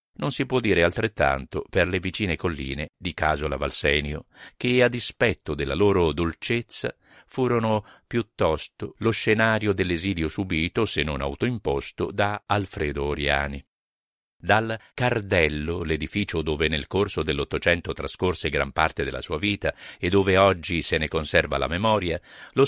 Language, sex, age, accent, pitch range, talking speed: Italian, male, 50-69, native, 80-110 Hz, 140 wpm